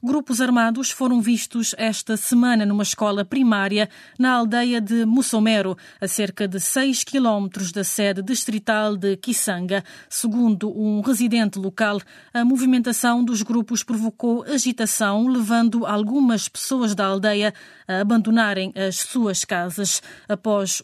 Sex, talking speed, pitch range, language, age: female, 125 wpm, 205-240 Hz, Portuguese, 20-39